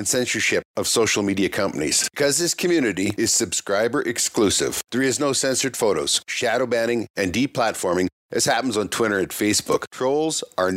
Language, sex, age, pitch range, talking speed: English, male, 50-69, 105-135 Hz, 160 wpm